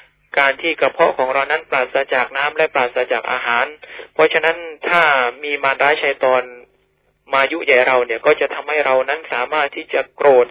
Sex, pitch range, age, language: male, 130-160 Hz, 20-39, Thai